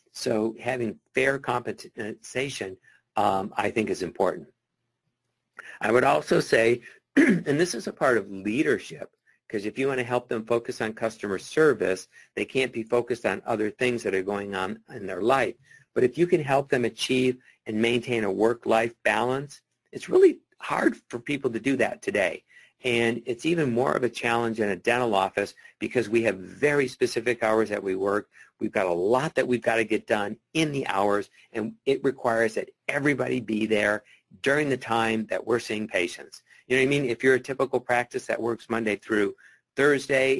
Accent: American